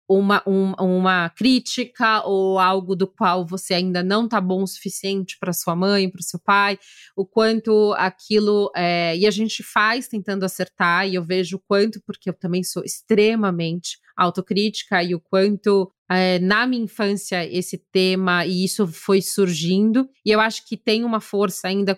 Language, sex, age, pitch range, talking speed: Portuguese, female, 20-39, 185-215 Hz, 175 wpm